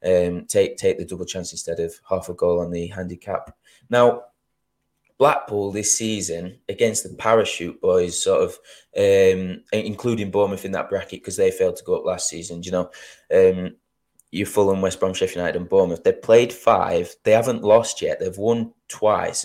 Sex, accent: male, British